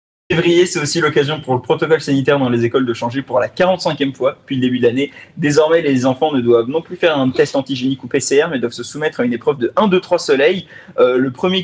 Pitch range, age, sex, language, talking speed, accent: 125-165 Hz, 20-39, male, French, 265 wpm, French